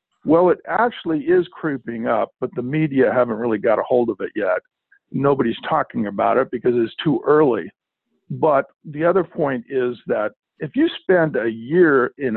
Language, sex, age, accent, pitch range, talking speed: English, male, 50-69, American, 125-200 Hz, 180 wpm